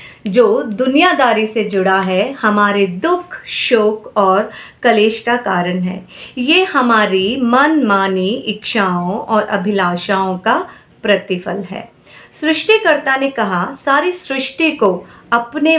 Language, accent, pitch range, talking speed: Hindi, native, 195-260 Hz, 115 wpm